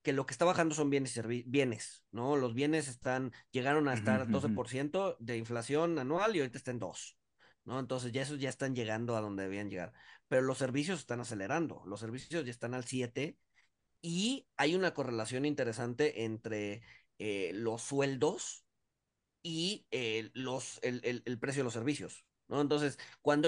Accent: Mexican